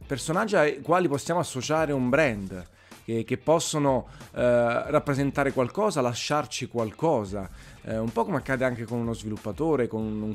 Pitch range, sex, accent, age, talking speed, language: 105-130 Hz, male, native, 30-49, 150 wpm, Italian